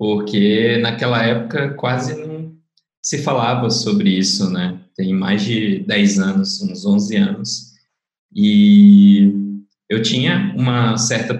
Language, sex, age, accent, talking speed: Portuguese, male, 20-39, Brazilian, 120 wpm